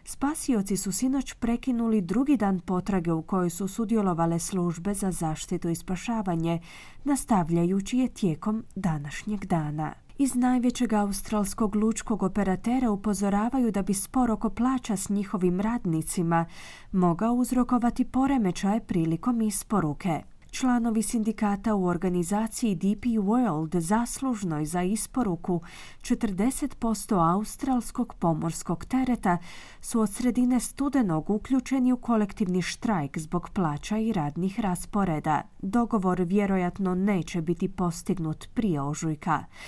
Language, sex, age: Croatian, female, 30-49